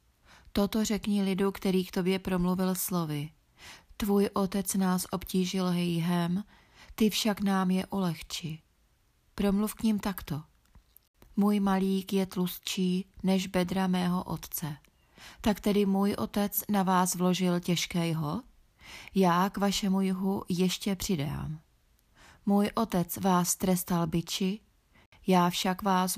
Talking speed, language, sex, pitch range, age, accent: 120 wpm, Czech, female, 170-195 Hz, 30-49, native